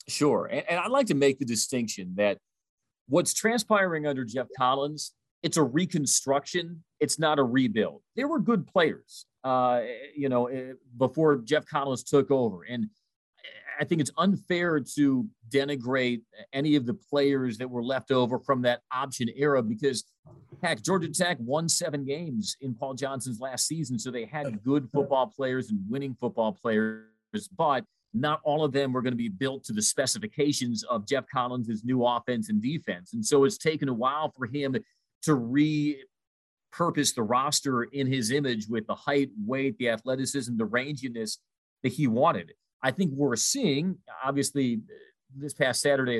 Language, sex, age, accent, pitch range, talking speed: English, male, 40-59, American, 125-155 Hz, 165 wpm